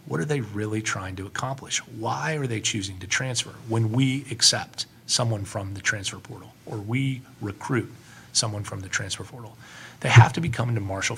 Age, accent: 30-49, American